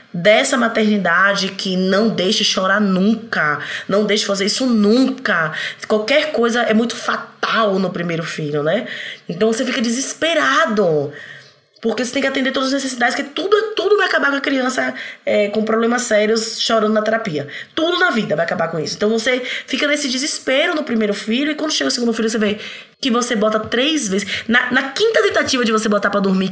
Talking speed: 190 wpm